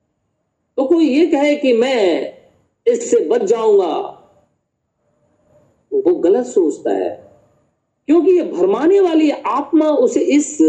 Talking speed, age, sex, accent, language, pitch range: 120 wpm, 50-69, male, native, Hindi, 255-390 Hz